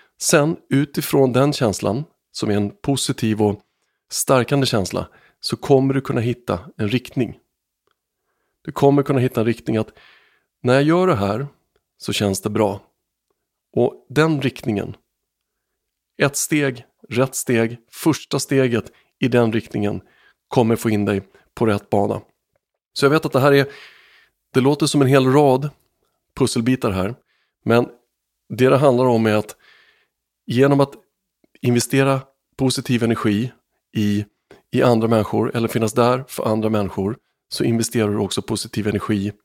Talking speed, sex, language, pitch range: 145 wpm, male, Swedish, 110-135 Hz